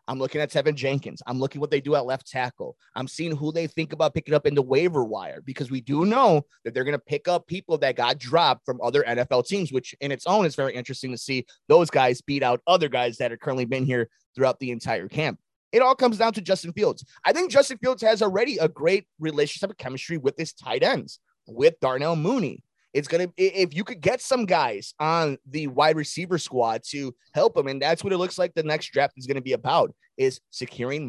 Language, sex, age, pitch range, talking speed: English, male, 30-49, 130-185 Hz, 245 wpm